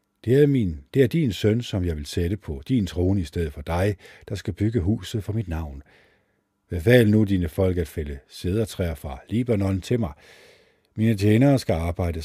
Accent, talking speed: native, 195 wpm